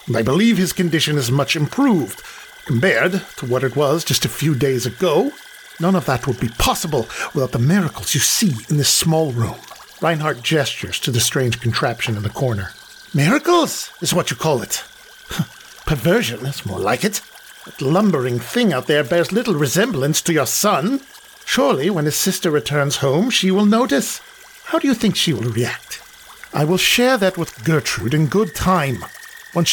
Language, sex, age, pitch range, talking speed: English, male, 50-69, 145-225 Hz, 180 wpm